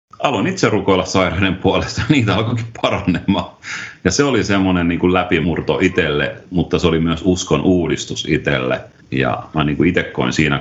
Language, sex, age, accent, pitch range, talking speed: Finnish, male, 40-59, native, 70-95 Hz, 155 wpm